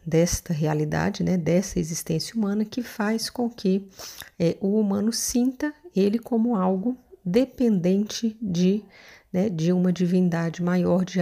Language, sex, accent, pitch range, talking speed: Portuguese, female, Brazilian, 170-200 Hz, 135 wpm